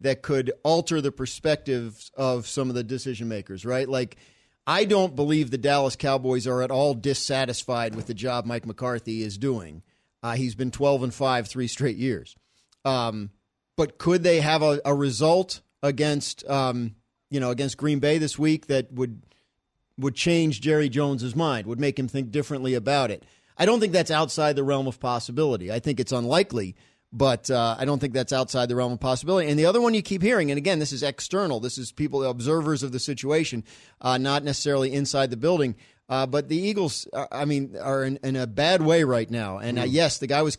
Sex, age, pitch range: male, 40-59, 125-150 Hz